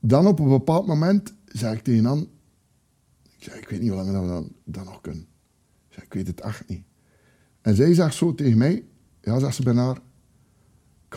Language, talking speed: Dutch, 205 wpm